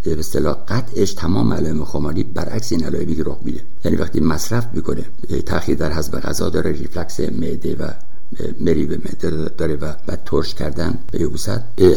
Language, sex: Persian, male